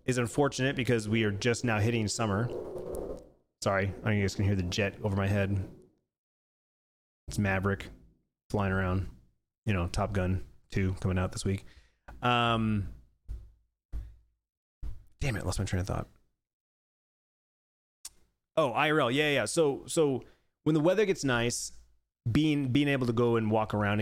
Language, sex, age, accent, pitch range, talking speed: English, male, 30-49, American, 95-125 Hz, 150 wpm